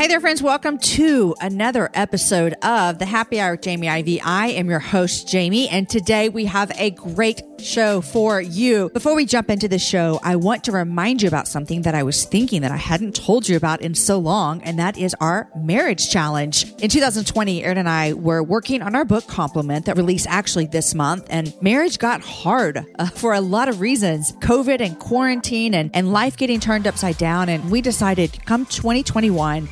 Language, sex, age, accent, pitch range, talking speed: English, female, 40-59, American, 170-225 Hz, 205 wpm